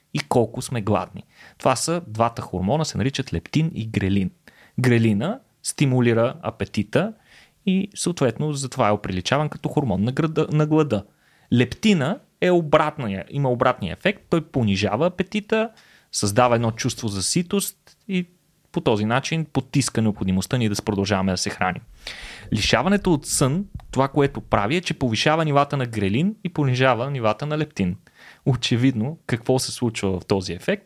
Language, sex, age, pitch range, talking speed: Bulgarian, male, 30-49, 110-165 Hz, 145 wpm